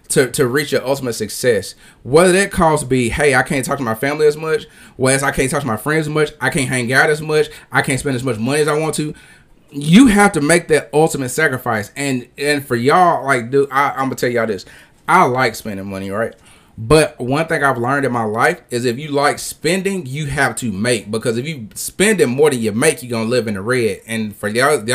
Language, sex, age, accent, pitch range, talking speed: English, male, 30-49, American, 120-165 Hz, 255 wpm